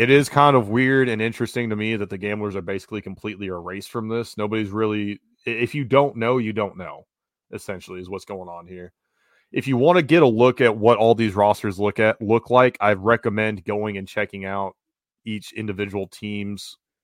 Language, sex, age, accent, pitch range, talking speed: English, male, 30-49, American, 100-115 Hz, 205 wpm